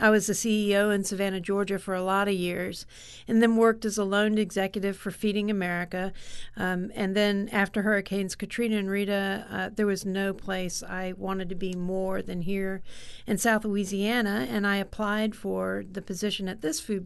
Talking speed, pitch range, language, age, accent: 190 wpm, 190-215 Hz, English, 50-69, American